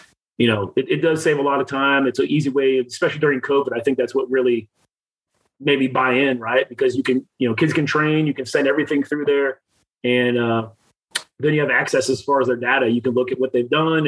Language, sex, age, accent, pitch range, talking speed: English, male, 30-49, American, 125-145 Hz, 245 wpm